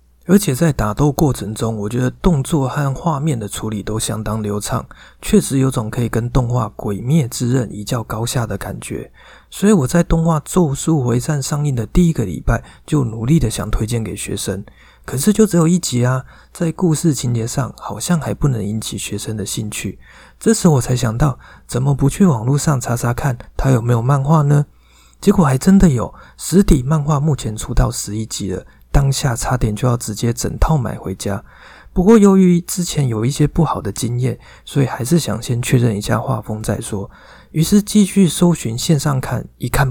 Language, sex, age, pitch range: Chinese, male, 20-39, 110-155 Hz